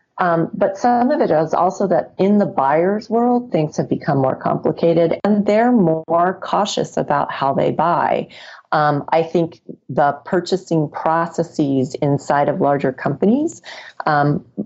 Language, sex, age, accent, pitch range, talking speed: English, female, 40-59, American, 140-185 Hz, 145 wpm